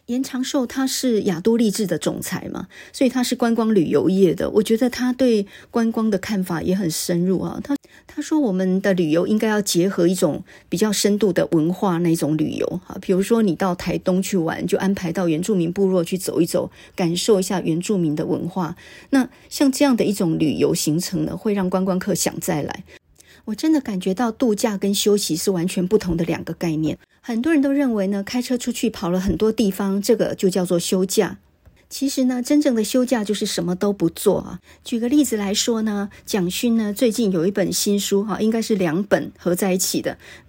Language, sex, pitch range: Chinese, female, 180-225 Hz